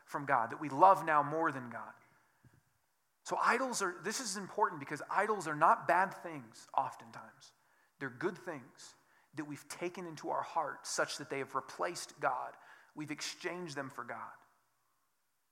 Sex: male